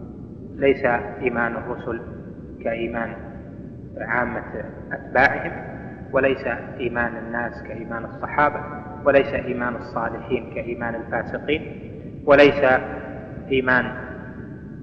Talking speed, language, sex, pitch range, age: 75 wpm, Arabic, male, 115-125 Hz, 20-39